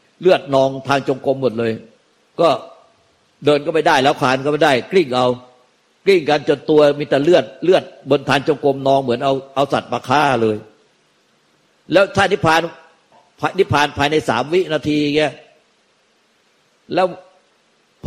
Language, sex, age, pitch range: Thai, male, 60-79, 130-155 Hz